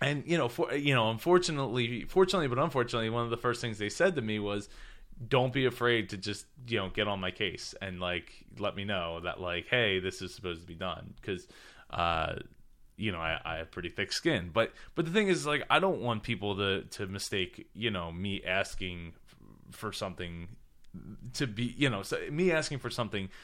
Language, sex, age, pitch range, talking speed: English, male, 20-39, 95-125 Hz, 215 wpm